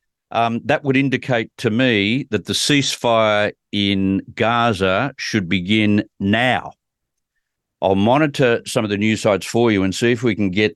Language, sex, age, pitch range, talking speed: English, male, 50-69, 100-150 Hz, 160 wpm